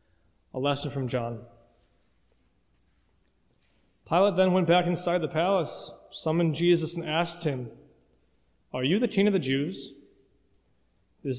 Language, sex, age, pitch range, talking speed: English, male, 20-39, 135-185 Hz, 125 wpm